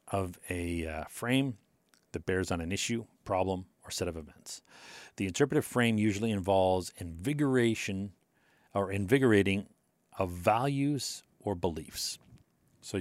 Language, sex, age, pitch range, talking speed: English, male, 40-59, 90-120 Hz, 125 wpm